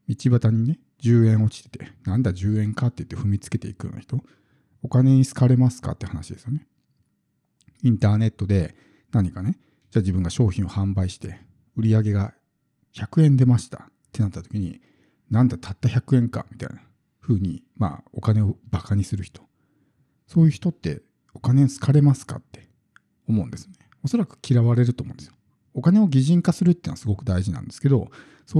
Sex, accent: male, native